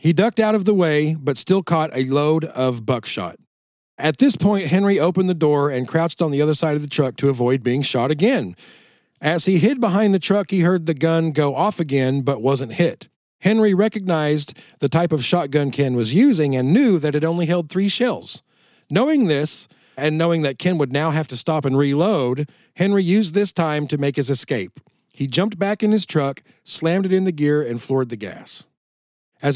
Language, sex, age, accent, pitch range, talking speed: English, male, 40-59, American, 140-185 Hz, 210 wpm